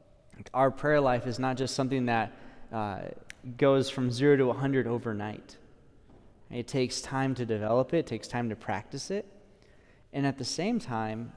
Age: 20-39